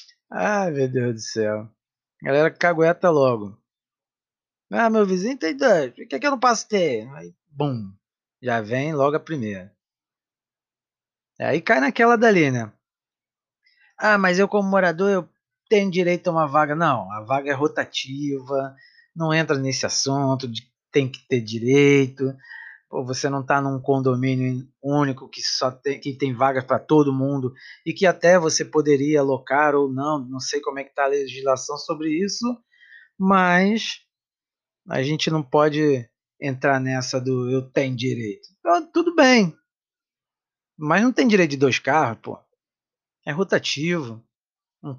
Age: 20-39